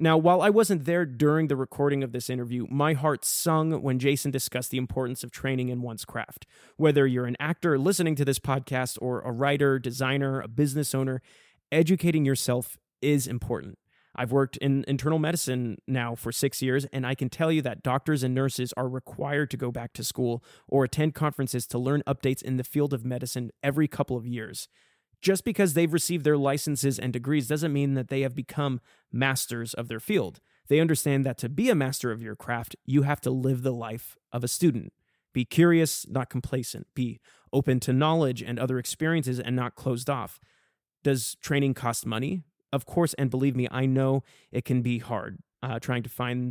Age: 20-39